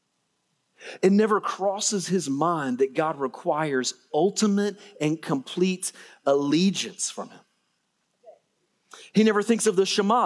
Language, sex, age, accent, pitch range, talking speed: English, male, 30-49, American, 155-205 Hz, 115 wpm